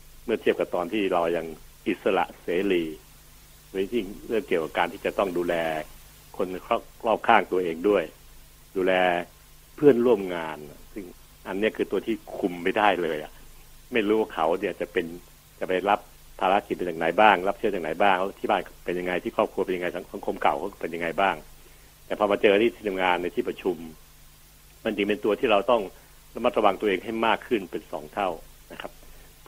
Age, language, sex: 60-79, Thai, male